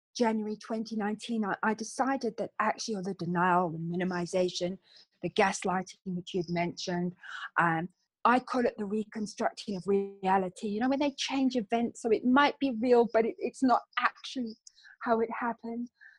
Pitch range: 185-230 Hz